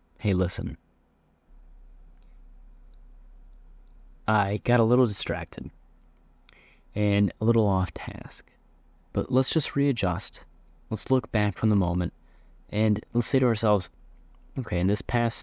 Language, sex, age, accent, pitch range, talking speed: English, male, 30-49, American, 80-110 Hz, 120 wpm